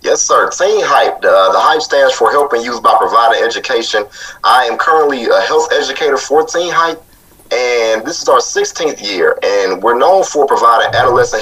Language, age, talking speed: English, 30-49, 185 wpm